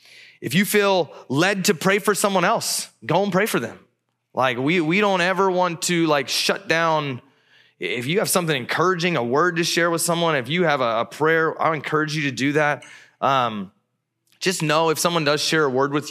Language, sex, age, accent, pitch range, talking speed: English, male, 20-39, American, 130-170 Hz, 210 wpm